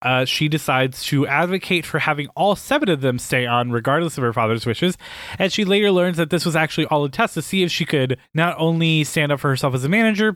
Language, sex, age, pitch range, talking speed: English, male, 20-39, 125-165 Hz, 250 wpm